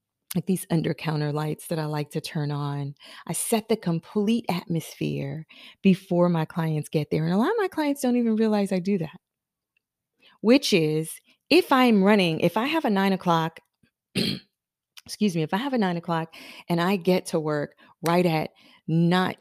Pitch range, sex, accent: 155-190 Hz, female, American